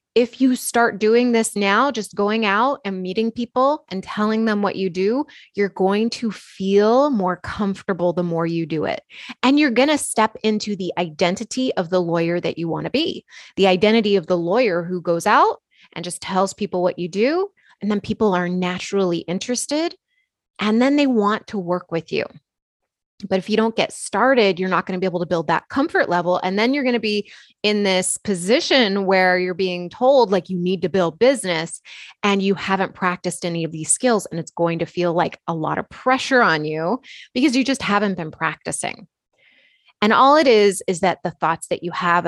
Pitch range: 175-230 Hz